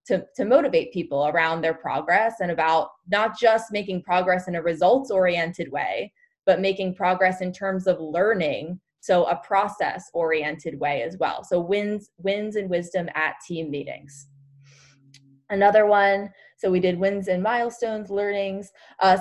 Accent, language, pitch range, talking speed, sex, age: American, English, 165-200 Hz, 150 wpm, female, 20-39